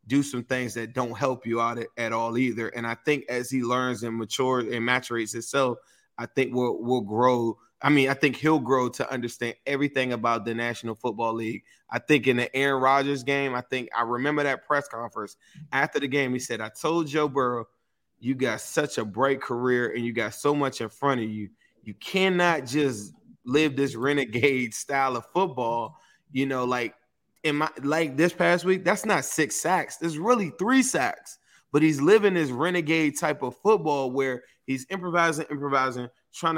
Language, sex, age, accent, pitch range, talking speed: English, male, 20-39, American, 120-150 Hz, 195 wpm